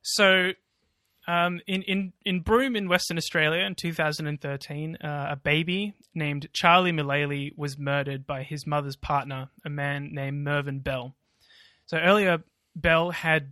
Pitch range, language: 145-175 Hz, English